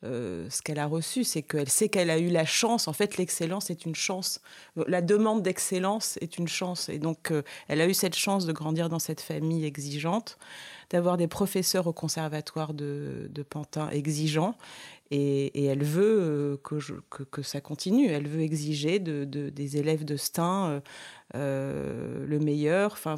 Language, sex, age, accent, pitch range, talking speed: French, female, 30-49, French, 145-175 Hz, 190 wpm